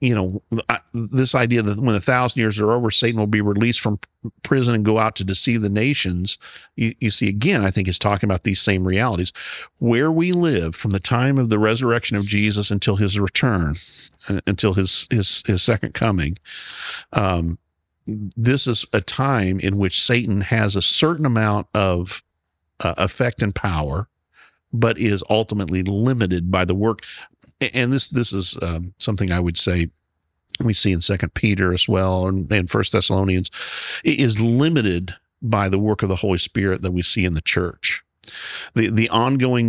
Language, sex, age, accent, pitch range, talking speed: English, male, 50-69, American, 95-115 Hz, 175 wpm